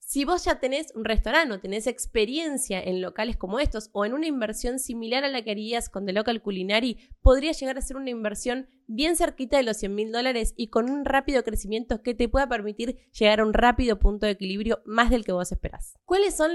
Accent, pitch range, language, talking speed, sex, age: Argentinian, 215-270 Hz, Spanish, 220 wpm, female, 20-39